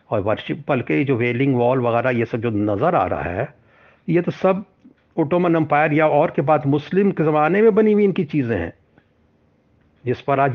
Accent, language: native, Hindi